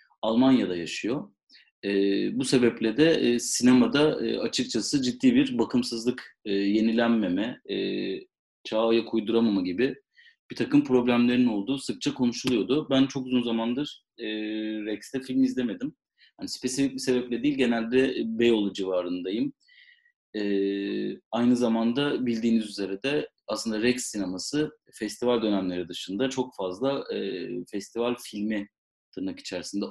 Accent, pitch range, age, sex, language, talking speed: native, 100-135 Hz, 30-49, male, Turkish, 120 wpm